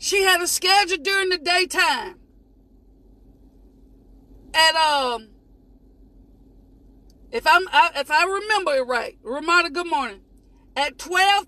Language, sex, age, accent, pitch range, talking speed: English, female, 40-59, American, 280-385 Hz, 115 wpm